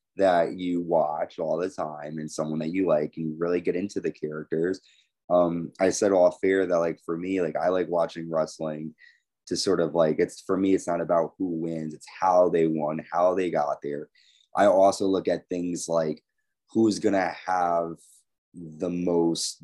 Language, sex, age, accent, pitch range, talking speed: English, male, 20-39, American, 85-95 Hz, 195 wpm